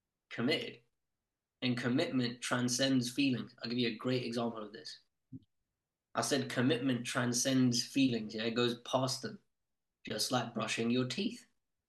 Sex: male